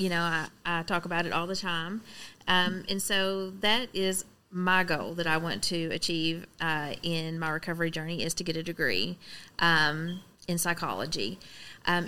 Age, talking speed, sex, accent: 30-49, 180 wpm, female, American